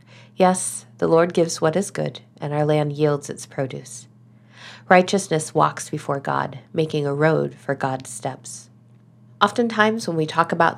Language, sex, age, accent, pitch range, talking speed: English, female, 40-59, American, 130-165 Hz, 155 wpm